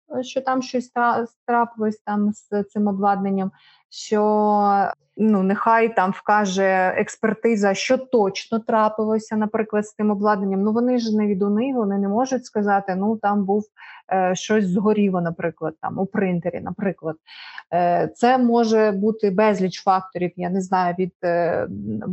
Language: Ukrainian